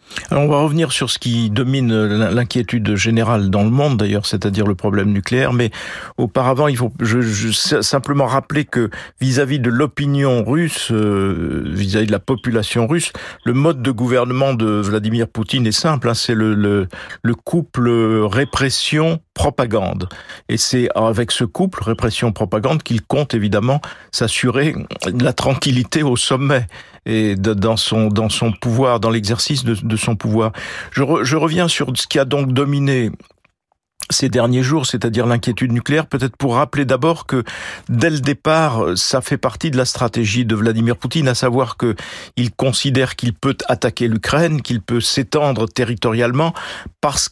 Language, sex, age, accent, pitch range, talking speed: French, male, 50-69, French, 110-140 Hz, 160 wpm